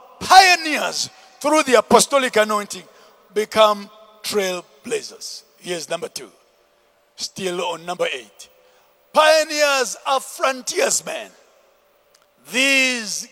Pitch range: 220-285 Hz